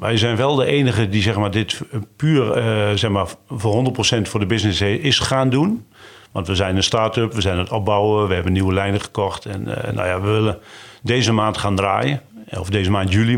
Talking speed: 225 wpm